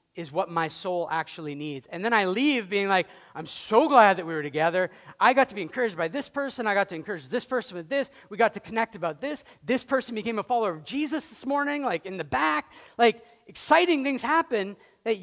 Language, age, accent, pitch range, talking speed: English, 40-59, American, 190-260 Hz, 235 wpm